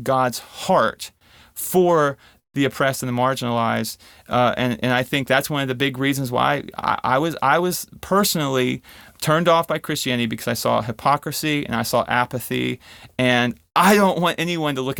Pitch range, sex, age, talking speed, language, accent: 125-165 Hz, male, 30-49, 180 wpm, English, American